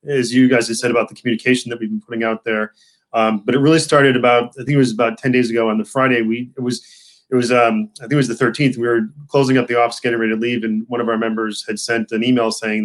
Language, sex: English, male